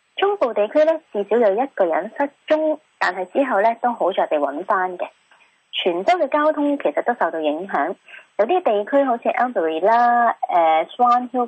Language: Chinese